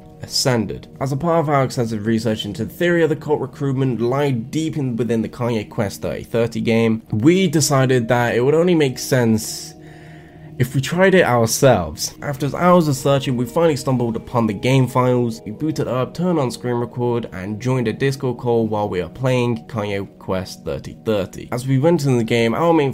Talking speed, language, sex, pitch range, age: 195 wpm, English, male, 110-145 Hz, 10-29